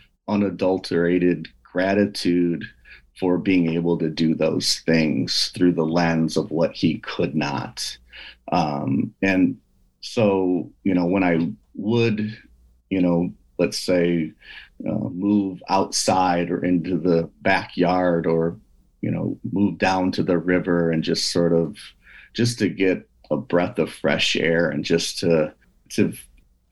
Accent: American